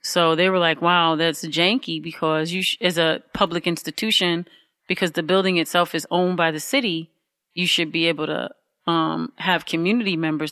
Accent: American